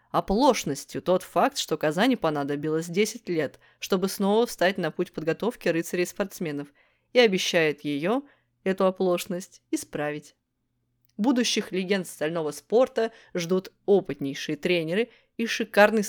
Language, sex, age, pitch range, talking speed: Russian, female, 20-39, 155-210 Hz, 115 wpm